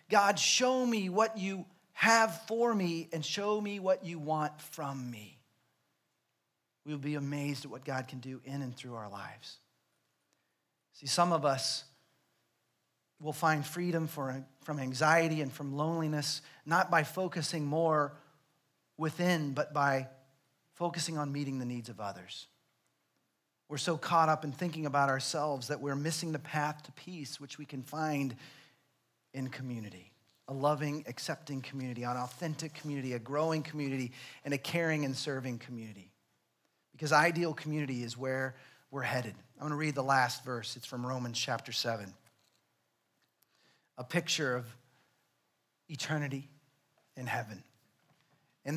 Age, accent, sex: 40-59, American, male